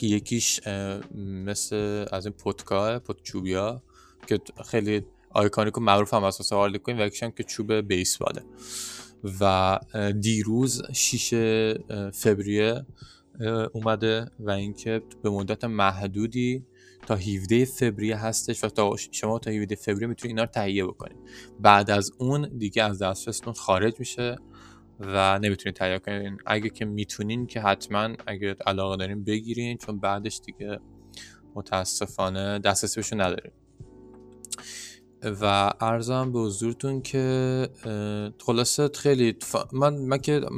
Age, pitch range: 20-39, 100-120 Hz